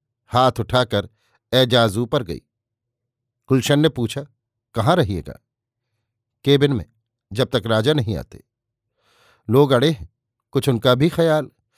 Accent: native